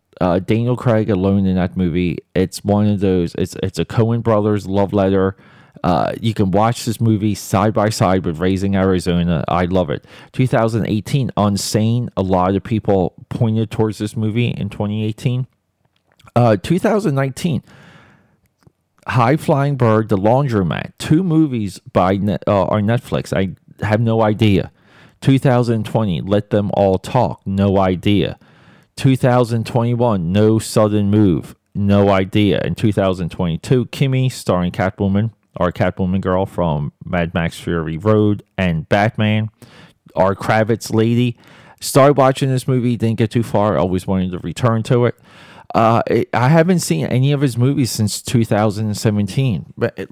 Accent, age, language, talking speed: American, 30-49, English, 145 wpm